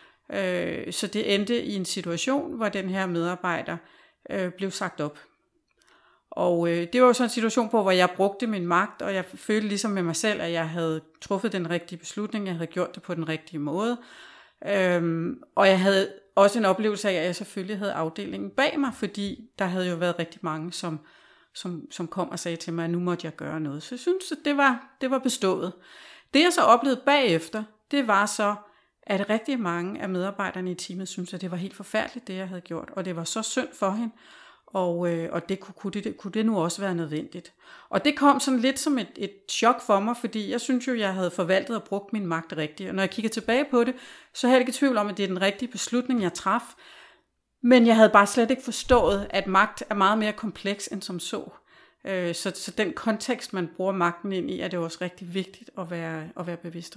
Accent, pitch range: native, 180-235 Hz